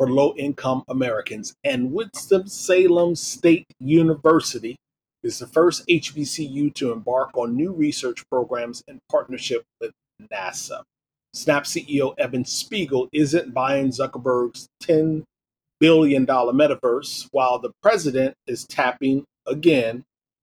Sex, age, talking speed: male, 40-59, 110 wpm